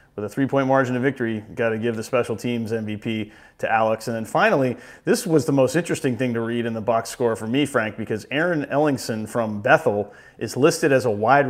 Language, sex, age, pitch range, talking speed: English, male, 30-49, 115-145 Hz, 225 wpm